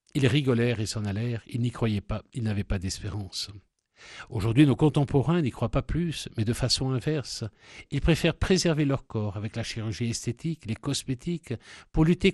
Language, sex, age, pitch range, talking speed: French, male, 60-79, 110-150 Hz, 180 wpm